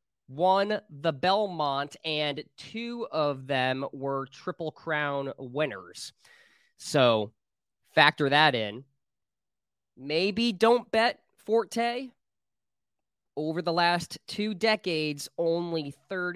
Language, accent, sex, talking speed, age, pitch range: English, American, male, 90 wpm, 20-39, 140-185 Hz